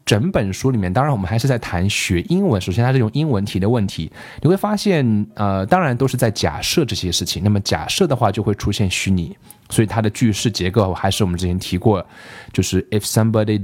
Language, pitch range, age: Chinese, 95-130 Hz, 20-39